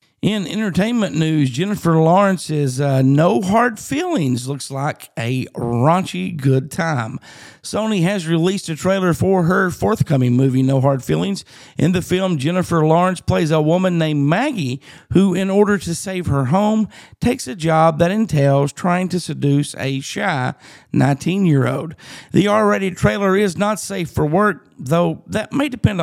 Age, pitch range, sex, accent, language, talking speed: 50-69, 145-195 Hz, male, American, English, 155 wpm